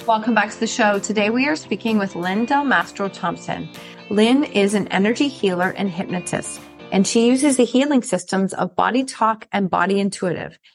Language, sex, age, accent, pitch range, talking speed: English, female, 30-49, American, 190-240 Hz, 185 wpm